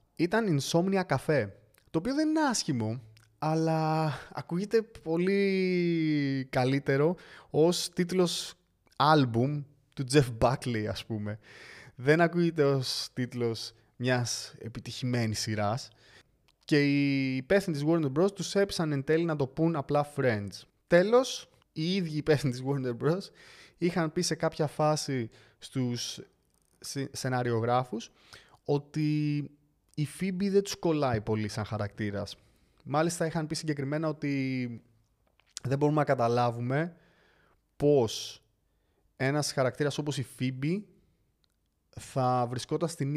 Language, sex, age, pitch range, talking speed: Greek, male, 20-39, 120-155 Hz, 115 wpm